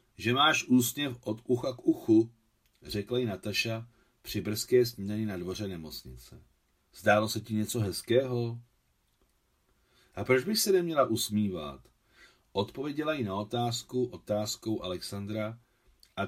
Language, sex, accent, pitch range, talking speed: Czech, male, native, 100-125 Hz, 125 wpm